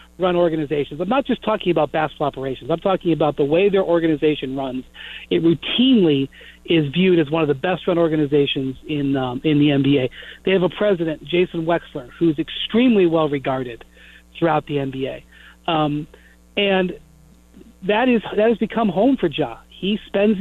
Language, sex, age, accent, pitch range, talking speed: English, male, 40-59, American, 150-195 Hz, 170 wpm